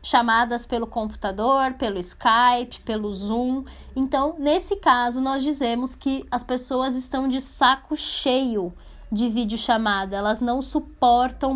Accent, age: Brazilian, 10-29